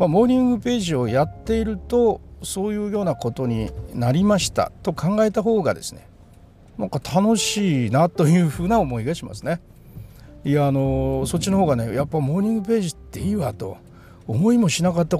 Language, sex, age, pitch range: Japanese, male, 60-79, 115-185 Hz